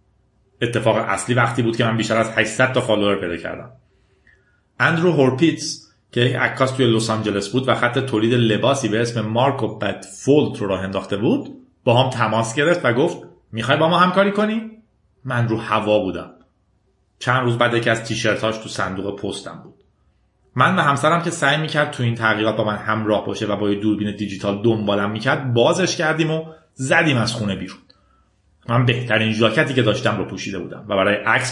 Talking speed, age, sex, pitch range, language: 185 wpm, 40-59, male, 105-130 Hz, Persian